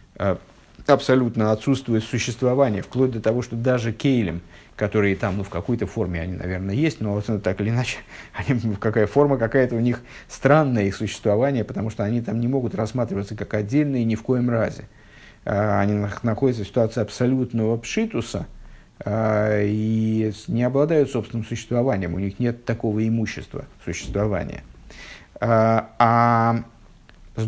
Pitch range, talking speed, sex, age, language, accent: 105-125 Hz, 140 wpm, male, 50-69, Russian, native